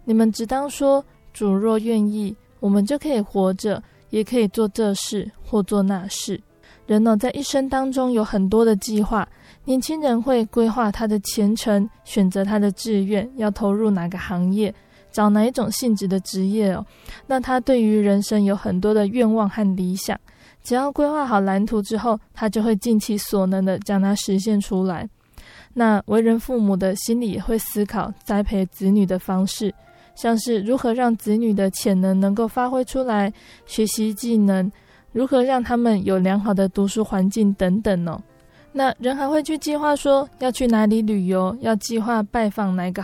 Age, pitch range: 20-39, 200-235 Hz